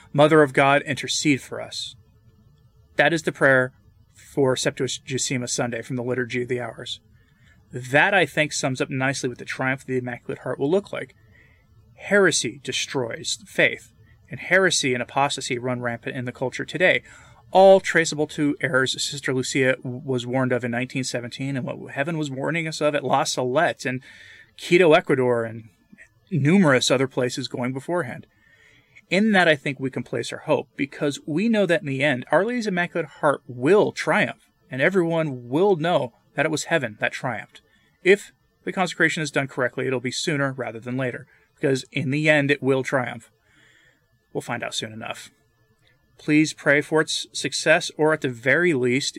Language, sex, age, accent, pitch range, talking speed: English, male, 30-49, American, 125-150 Hz, 175 wpm